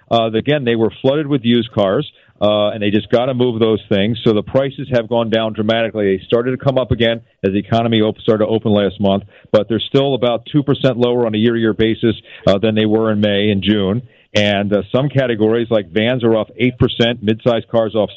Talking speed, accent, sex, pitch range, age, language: 235 wpm, American, male, 110-125 Hz, 50-69, English